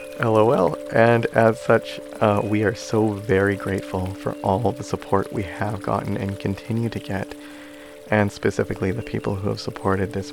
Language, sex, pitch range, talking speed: English, male, 90-110 Hz, 170 wpm